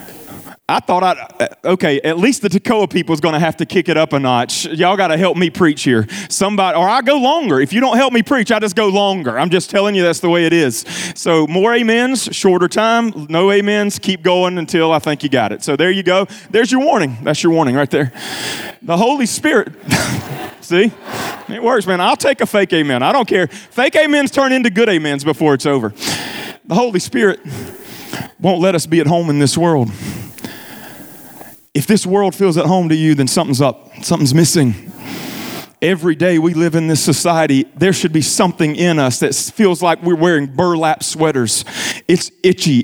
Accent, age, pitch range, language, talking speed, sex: American, 30-49, 165-225 Hz, English, 205 wpm, male